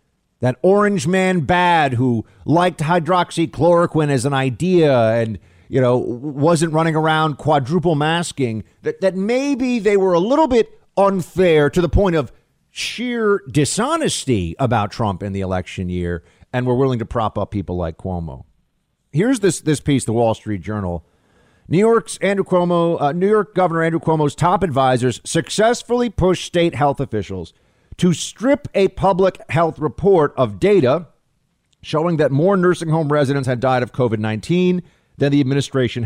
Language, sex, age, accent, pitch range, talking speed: English, male, 50-69, American, 120-175 Hz, 155 wpm